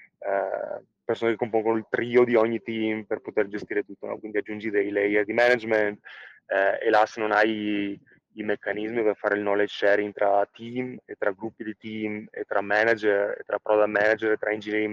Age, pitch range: 20-39, 105-115 Hz